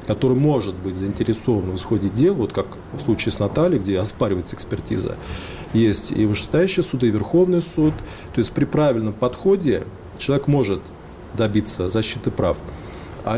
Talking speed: 155 wpm